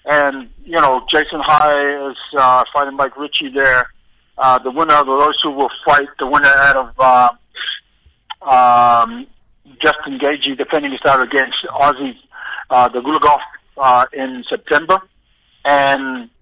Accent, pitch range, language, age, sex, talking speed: American, 130-150 Hz, English, 50-69, male, 150 wpm